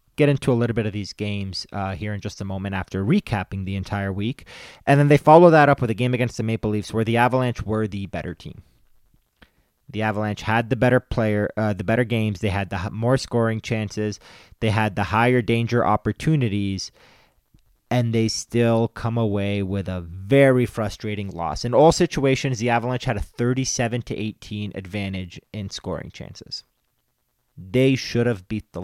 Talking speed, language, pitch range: 185 wpm, English, 100-125 Hz